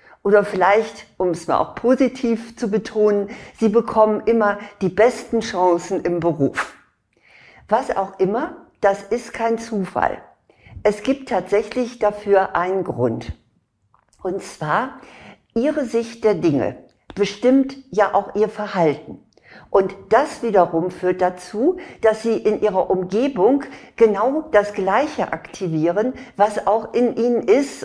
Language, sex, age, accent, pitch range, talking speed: German, female, 50-69, German, 180-225 Hz, 130 wpm